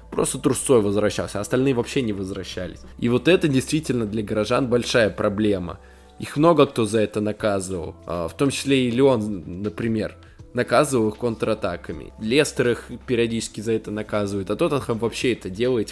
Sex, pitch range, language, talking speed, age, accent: male, 100-125 Hz, Russian, 155 wpm, 20-39, native